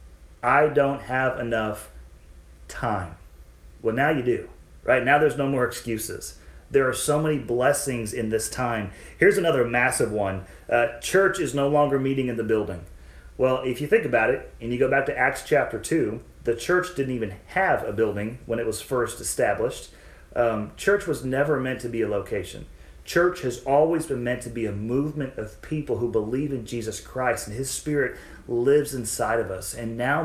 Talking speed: 190 wpm